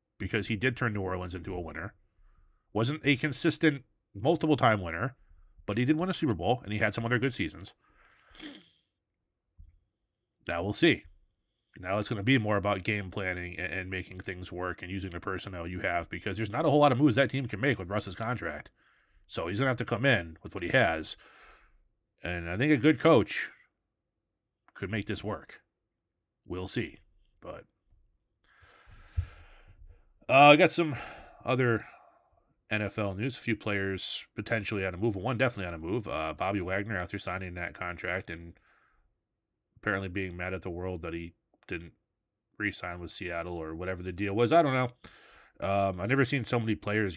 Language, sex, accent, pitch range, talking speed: English, male, American, 90-120 Hz, 185 wpm